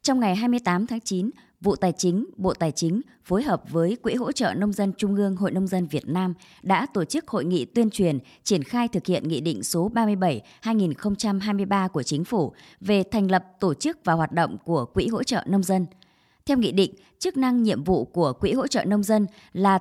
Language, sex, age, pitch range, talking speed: Vietnamese, male, 20-39, 180-230 Hz, 220 wpm